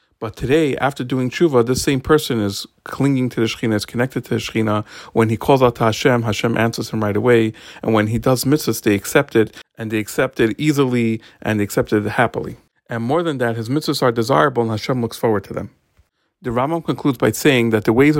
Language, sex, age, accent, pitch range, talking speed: English, male, 50-69, American, 110-135 Hz, 230 wpm